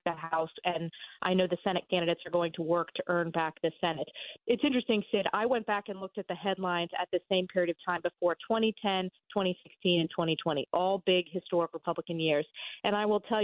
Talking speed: 205 wpm